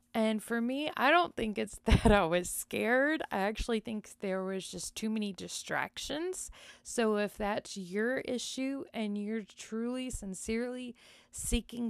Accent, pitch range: American, 200-245 Hz